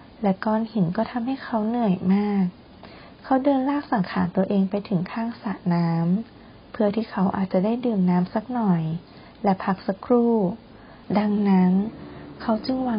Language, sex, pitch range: Thai, female, 185-220 Hz